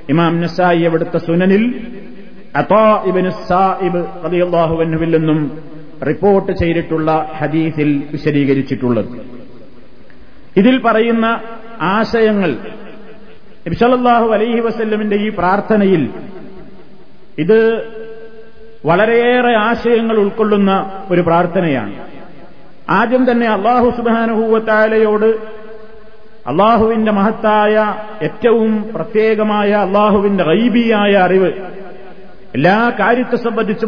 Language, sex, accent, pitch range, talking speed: Malayalam, male, native, 185-225 Hz, 85 wpm